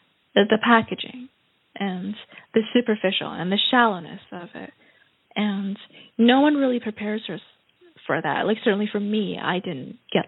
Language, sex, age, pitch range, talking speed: English, female, 20-39, 200-240 Hz, 140 wpm